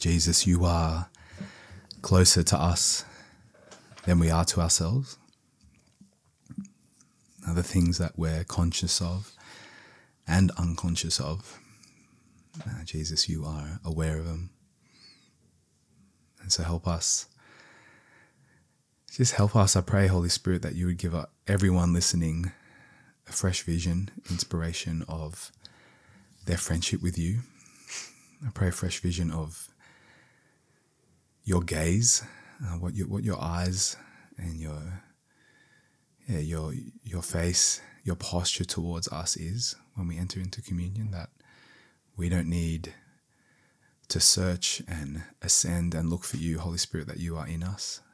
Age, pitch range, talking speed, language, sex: 20-39, 85-95 Hz, 125 wpm, English, male